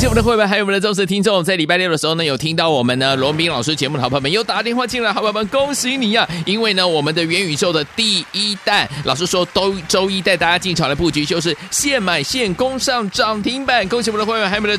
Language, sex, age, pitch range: Chinese, male, 30-49, 165-225 Hz